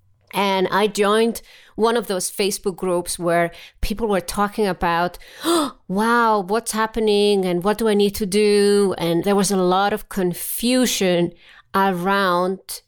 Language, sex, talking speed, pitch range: English, female, 145 wpm, 175-225 Hz